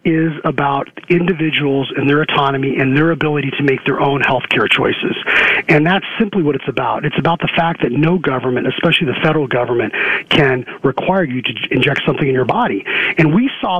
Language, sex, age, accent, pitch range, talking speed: English, male, 40-59, American, 150-200 Hz, 195 wpm